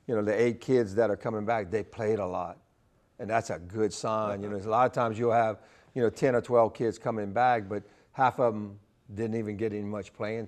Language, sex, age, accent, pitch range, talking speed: English, male, 50-69, American, 105-120 Hz, 250 wpm